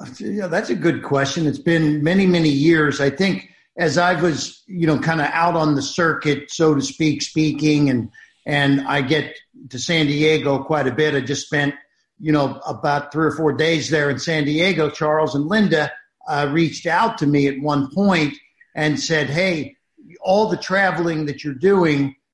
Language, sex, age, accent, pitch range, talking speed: English, male, 50-69, American, 145-175 Hz, 190 wpm